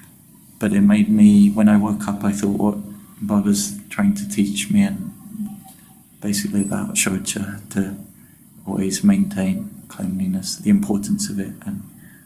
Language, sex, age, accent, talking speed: English, male, 30-49, British, 140 wpm